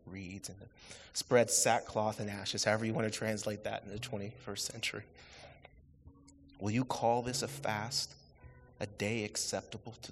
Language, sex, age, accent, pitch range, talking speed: English, male, 30-49, American, 90-115 Hz, 155 wpm